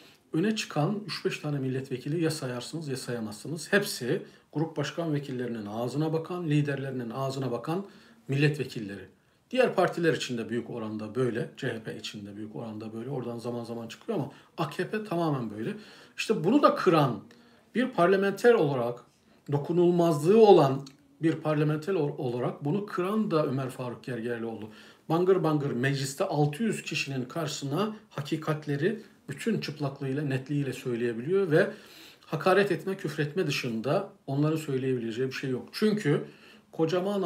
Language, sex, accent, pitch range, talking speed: Turkish, male, native, 130-170 Hz, 125 wpm